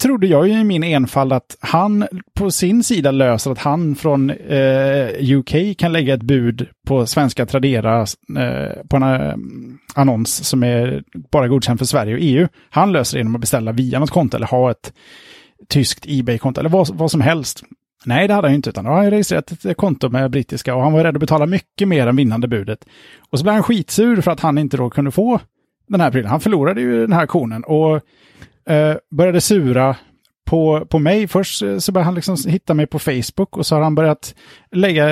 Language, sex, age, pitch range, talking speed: Swedish, male, 30-49, 130-175 Hz, 205 wpm